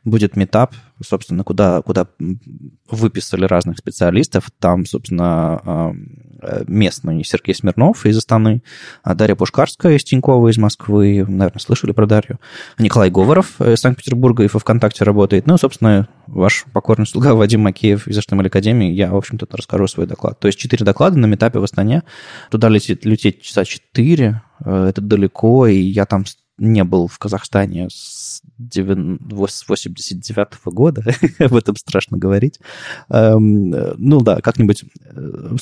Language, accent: Russian, native